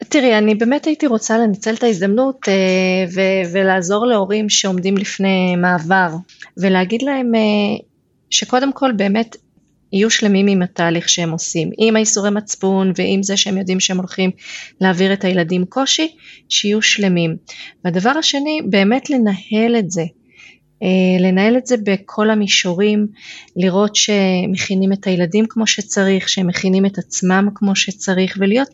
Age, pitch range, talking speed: 30-49, 185-220 Hz, 135 wpm